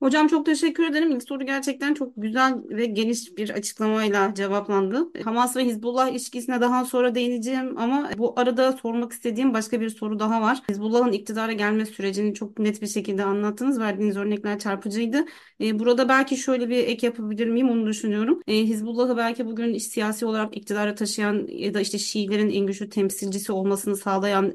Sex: female